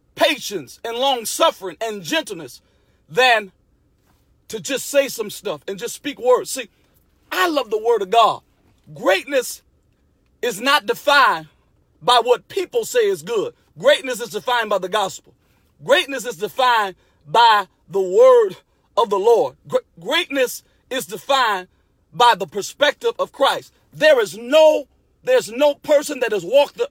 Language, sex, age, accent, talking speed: English, male, 40-59, American, 145 wpm